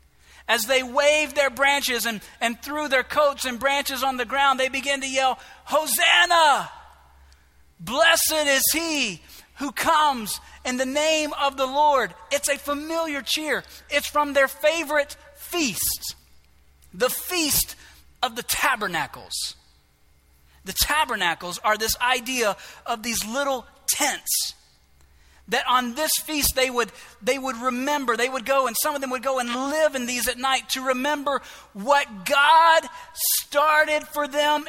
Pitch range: 235-300 Hz